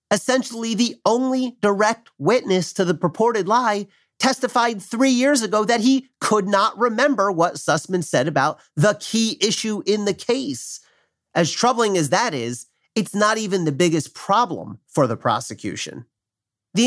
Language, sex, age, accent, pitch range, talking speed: English, male, 40-59, American, 145-225 Hz, 155 wpm